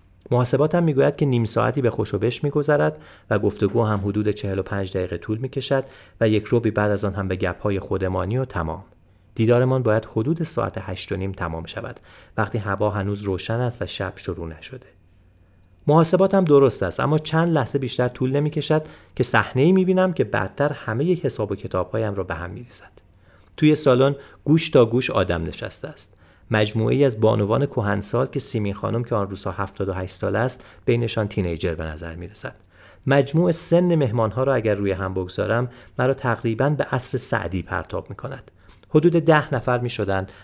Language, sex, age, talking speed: Persian, male, 40-59, 185 wpm